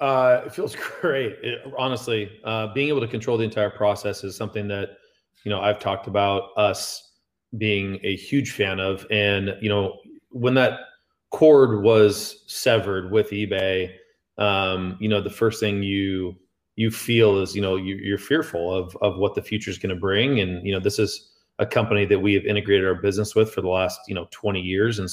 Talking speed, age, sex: 200 wpm, 30-49, male